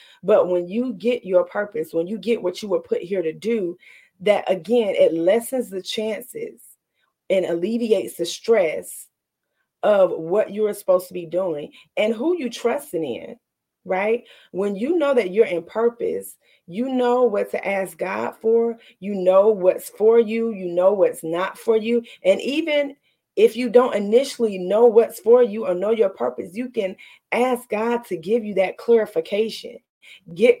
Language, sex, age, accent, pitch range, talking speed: English, female, 30-49, American, 185-245 Hz, 175 wpm